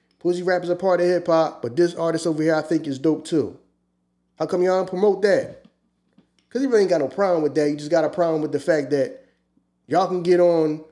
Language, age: English, 30-49